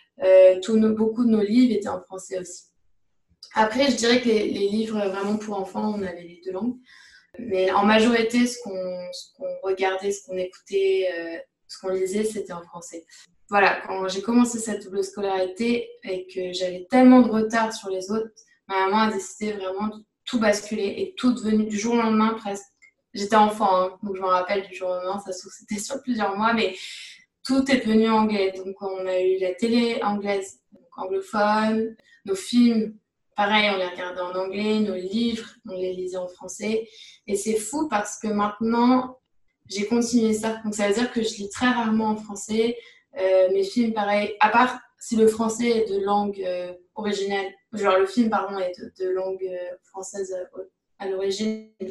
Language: English